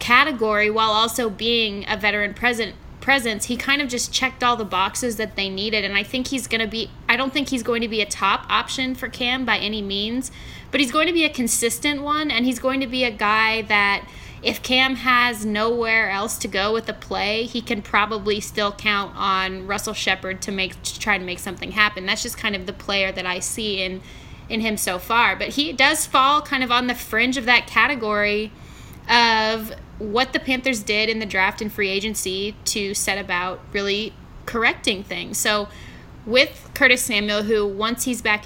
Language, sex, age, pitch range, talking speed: English, female, 20-39, 205-245 Hz, 210 wpm